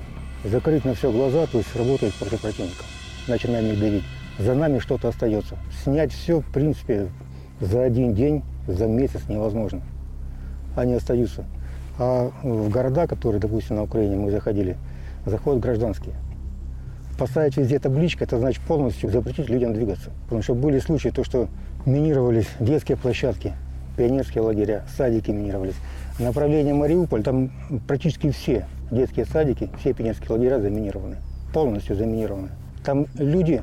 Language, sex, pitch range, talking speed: Russian, male, 95-130 Hz, 135 wpm